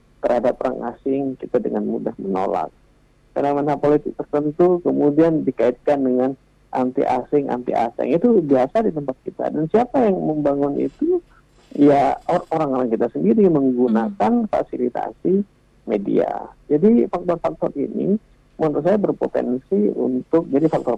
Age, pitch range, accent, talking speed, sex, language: 50-69, 130-180 Hz, native, 130 wpm, male, Indonesian